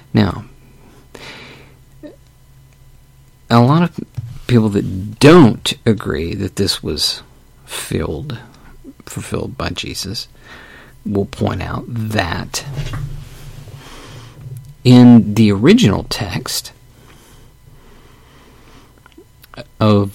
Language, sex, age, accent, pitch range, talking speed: English, male, 50-69, American, 115-135 Hz, 70 wpm